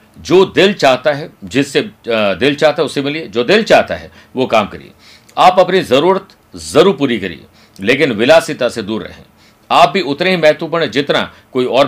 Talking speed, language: 185 wpm, Hindi